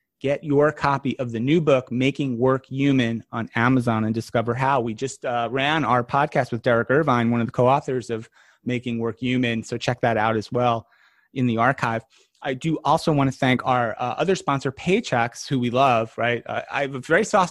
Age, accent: 30-49, American